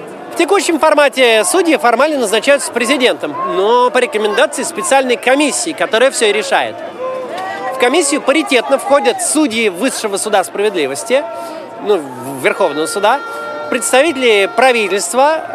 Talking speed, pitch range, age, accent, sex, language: 110 wpm, 230-315 Hz, 30-49, native, male, Russian